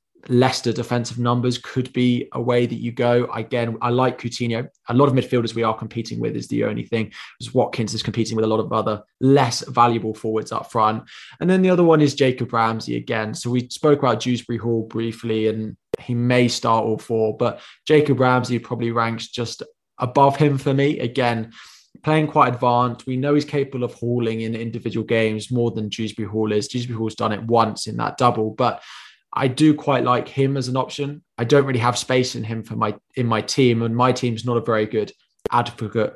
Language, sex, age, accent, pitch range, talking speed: English, male, 20-39, British, 110-125 Hz, 210 wpm